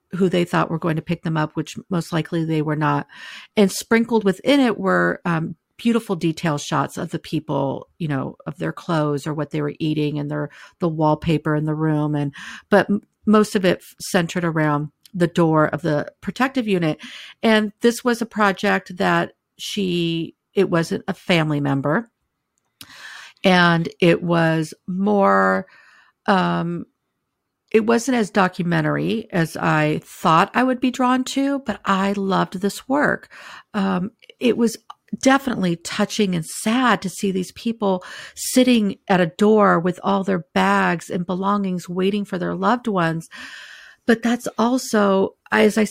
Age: 50-69